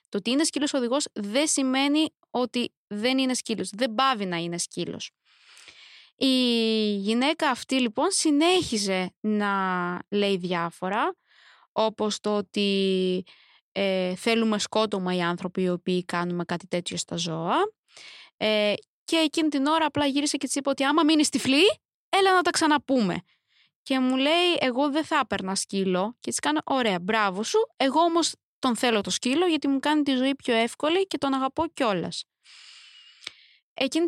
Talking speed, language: 155 wpm, Greek